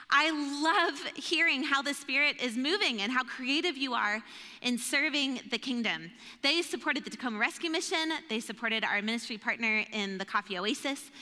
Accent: American